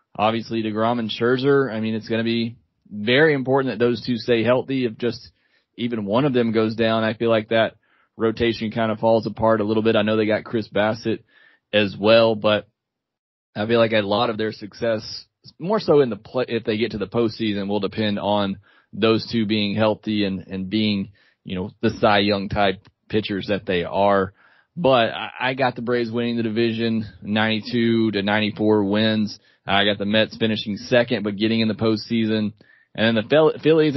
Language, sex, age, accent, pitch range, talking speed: English, male, 30-49, American, 110-125 Hz, 200 wpm